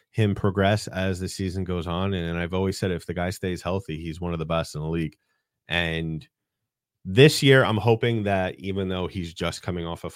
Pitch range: 90-110 Hz